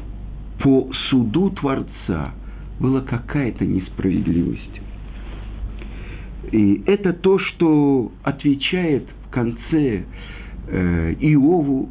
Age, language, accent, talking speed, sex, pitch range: 50-69, Russian, native, 70 wpm, male, 100-140 Hz